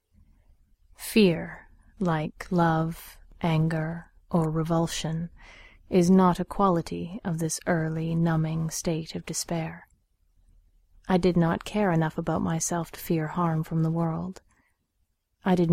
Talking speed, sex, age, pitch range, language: 120 wpm, female, 30-49, 150-175 Hz, English